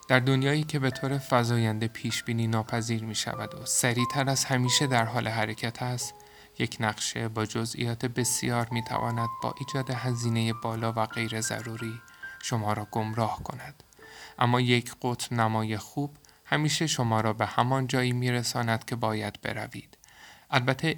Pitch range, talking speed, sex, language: 115-140 Hz, 150 wpm, male, Persian